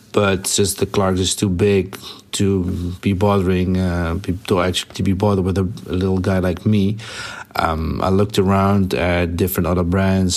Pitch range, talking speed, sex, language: 90-100 Hz, 185 wpm, male, German